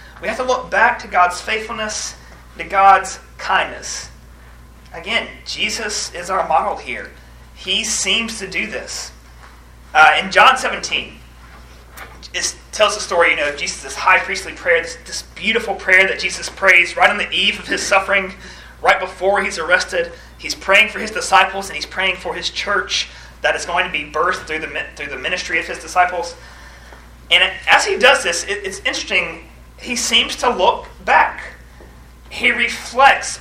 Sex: male